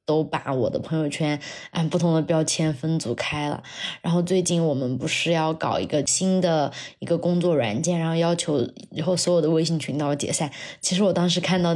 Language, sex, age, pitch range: Chinese, female, 20-39, 155-180 Hz